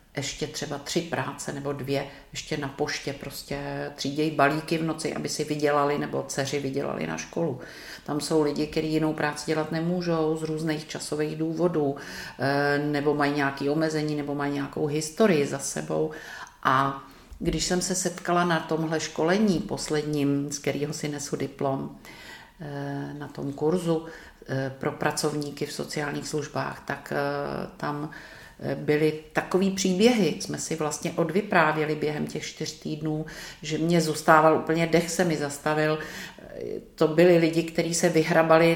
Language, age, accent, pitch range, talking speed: Czech, 50-69, native, 145-165 Hz, 145 wpm